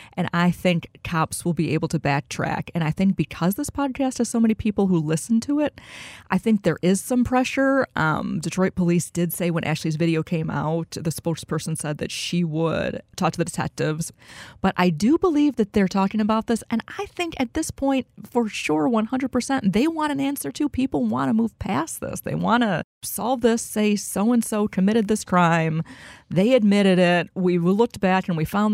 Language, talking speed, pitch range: English, 205 wpm, 165-220 Hz